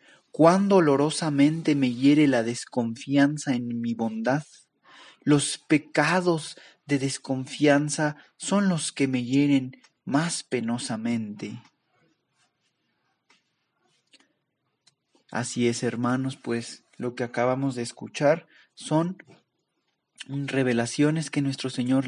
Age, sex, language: 30-49, male, Spanish